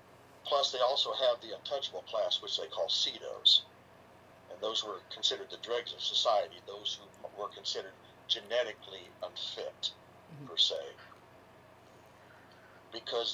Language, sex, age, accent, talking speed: English, male, 50-69, American, 125 wpm